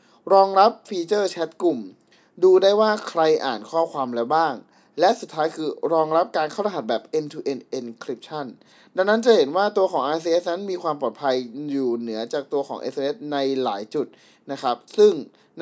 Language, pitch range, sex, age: Thai, 135-180 Hz, male, 20-39